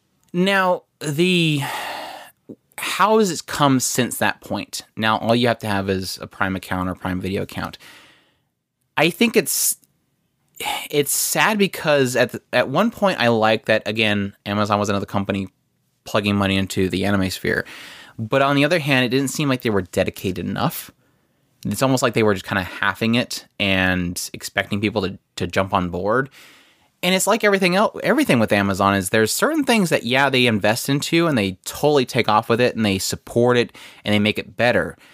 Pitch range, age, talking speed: 100-140 Hz, 20-39, 190 wpm